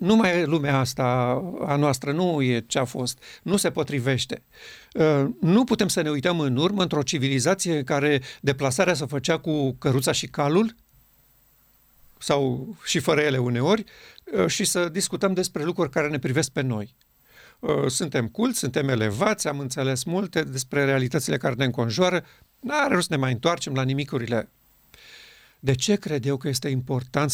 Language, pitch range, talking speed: Romanian, 130-180 Hz, 160 wpm